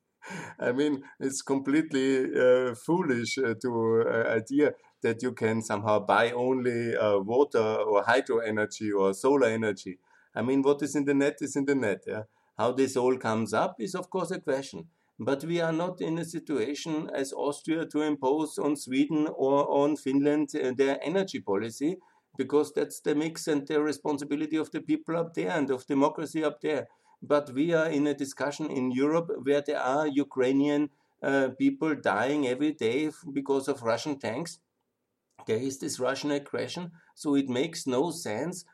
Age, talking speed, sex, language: 50-69, 175 wpm, male, German